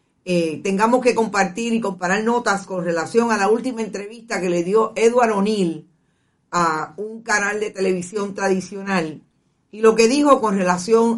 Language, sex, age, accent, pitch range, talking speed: Spanish, female, 50-69, American, 175-220 Hz, 160 wpm